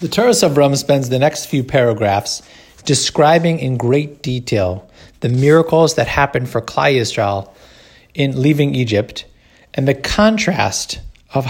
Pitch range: 115-145 Hz